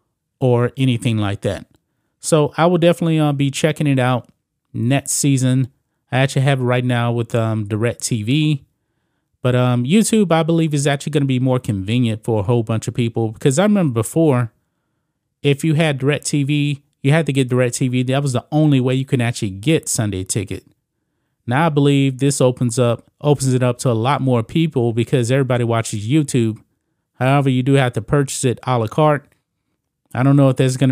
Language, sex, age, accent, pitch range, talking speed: English, male, 30-49, American, 115-140 Hz, 200 wpm